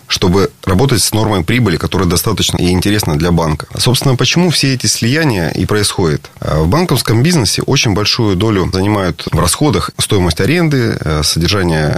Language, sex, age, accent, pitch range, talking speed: Russian, male, 30-49, native, 90-120 Hz, 150 wpm